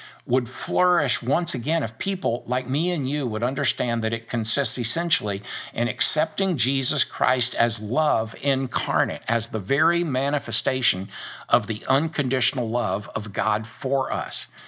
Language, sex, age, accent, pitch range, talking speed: English, male, 60-79, American, 115-145 Hz, 145 wpm